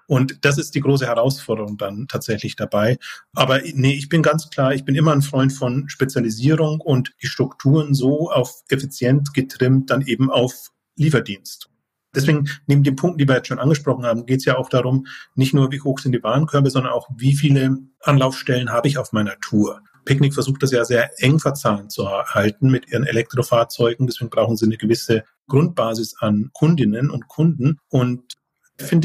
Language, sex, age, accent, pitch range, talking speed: German, male, 30-49, German, 125-145 Hz, 185 wpm